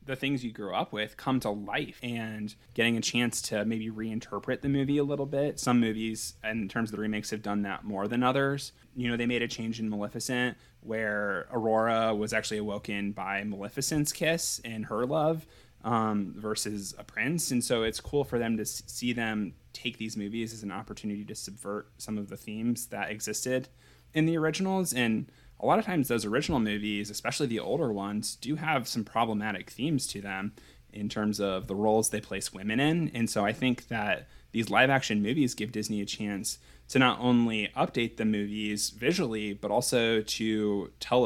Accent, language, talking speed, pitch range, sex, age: American, English, 195 wpm, 105-125 Hz, male, 20-39